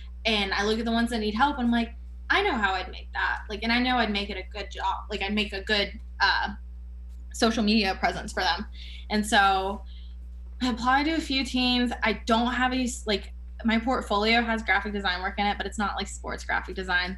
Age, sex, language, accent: 20-39, female, English, American